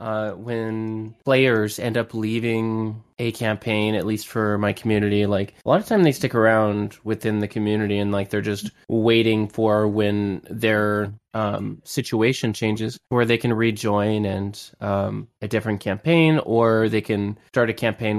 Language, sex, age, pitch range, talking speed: English, male, 20-39, 105-125 Hz, 165 wpm